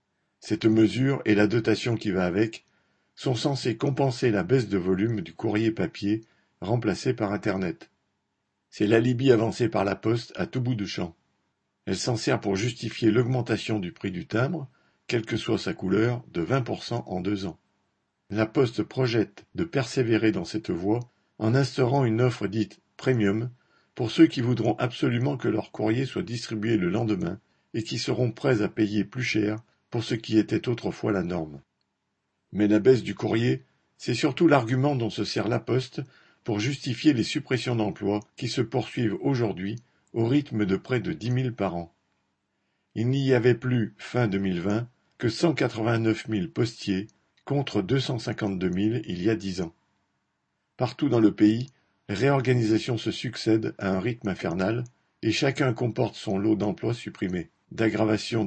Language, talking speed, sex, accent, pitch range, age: French, 165 wpm, male, French, 105-125 Hz, 50-69